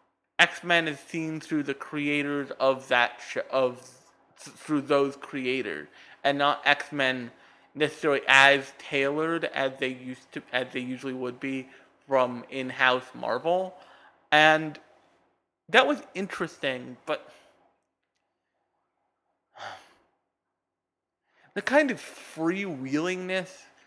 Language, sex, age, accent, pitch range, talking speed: English, male, 30-49, American, 130-155 Hz, 110 wpm